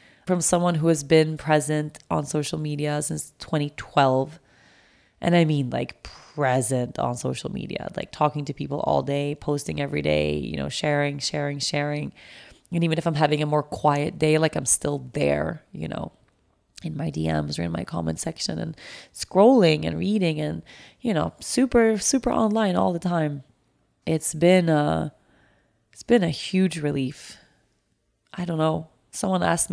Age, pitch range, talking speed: 20-39, 145-175 Hz, 160 wpm